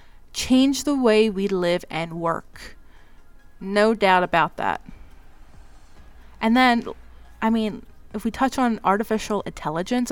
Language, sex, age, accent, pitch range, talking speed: English, female, 20-39, American, 175-235 Hz, 125 wpm